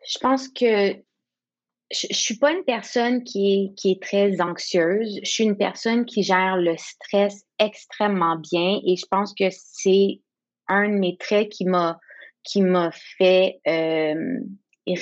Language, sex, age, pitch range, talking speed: French, female, 20-39, 180-220 Hz, 150 wpm